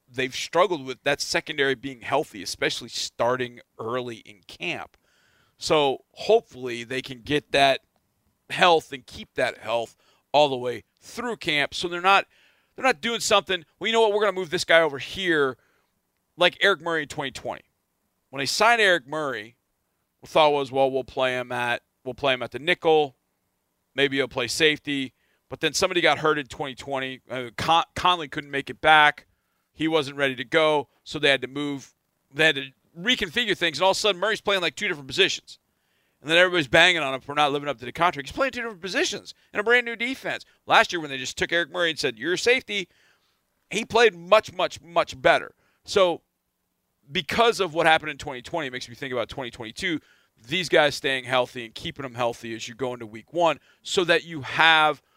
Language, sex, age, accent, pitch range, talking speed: English, male, 40-59, American, 130-175 Hz, 200 wpm